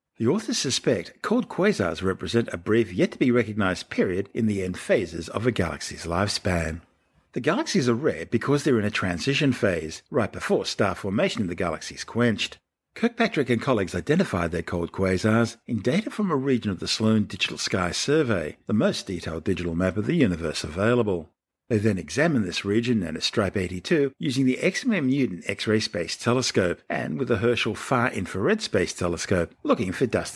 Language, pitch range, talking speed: English, 95-130 Hz, 180 wpm